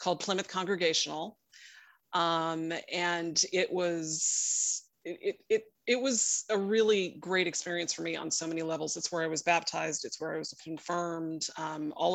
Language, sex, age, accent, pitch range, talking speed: English, female, 30-49, American, 160-185 Hz, 165 wpm